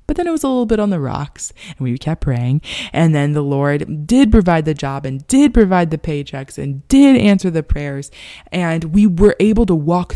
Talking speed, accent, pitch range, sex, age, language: 225 wpm, American, 145-195 Hz, female, 20-39, English